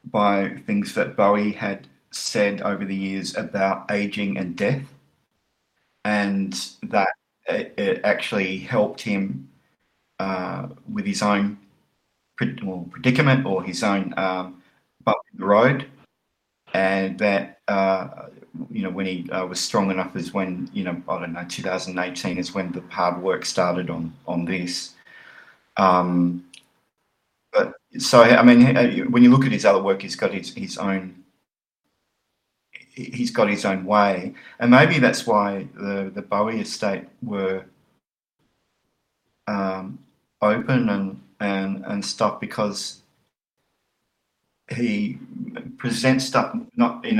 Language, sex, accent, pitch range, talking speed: English, male, Australian, 95-120 Hz, 130 wpm